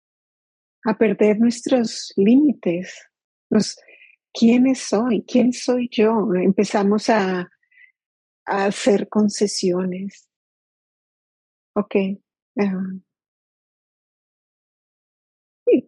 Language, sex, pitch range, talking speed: English, female, 185-215 Hz, 65 wpm